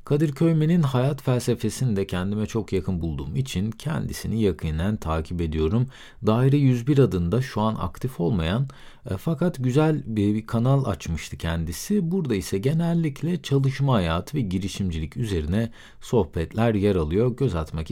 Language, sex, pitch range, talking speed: Turkish, male, 90-130 Hz, 135 wpm